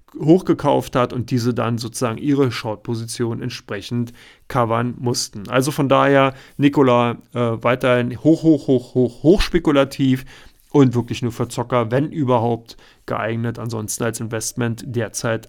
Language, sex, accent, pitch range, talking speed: German, male, German, 120-140 Hz, 135 wpm